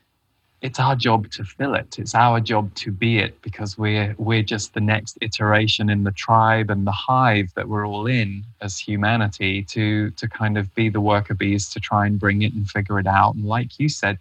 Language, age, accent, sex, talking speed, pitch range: English, 20-39, British, male, 220 wpm, 100-115 Hz